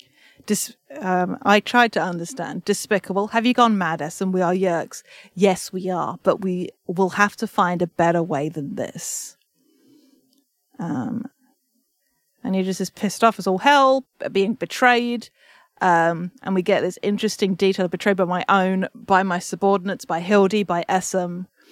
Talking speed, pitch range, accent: 160 wpm, 180-225 Hz, British